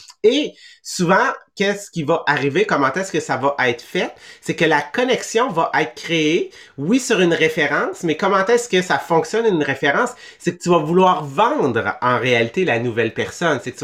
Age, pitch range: 30-49, 140-185 Hz